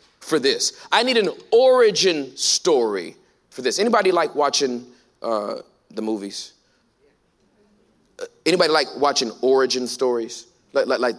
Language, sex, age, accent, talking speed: English, male, 30-49, American, 130 wpm